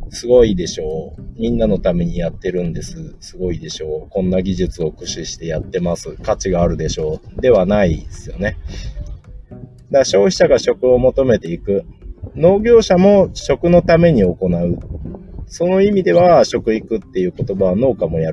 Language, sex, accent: Japanese, male, native